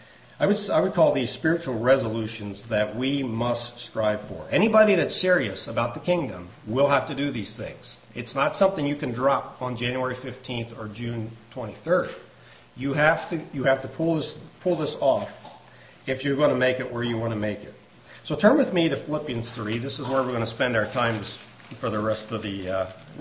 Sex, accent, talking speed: male, American, 210 wpm